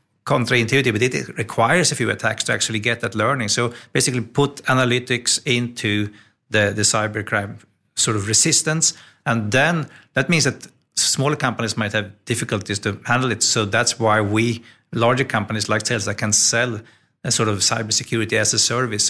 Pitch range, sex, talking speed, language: 105-120 Hz, male, 170 wpm, English